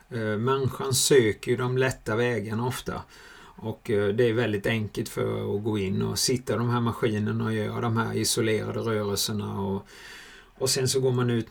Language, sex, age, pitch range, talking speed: Swedish, male, 30-49, 105-130 Hz, 175 wpm